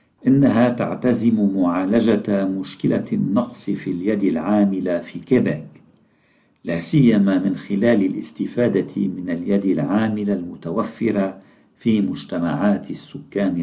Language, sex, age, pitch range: Arabic, male, 50-69, 95-120 Hz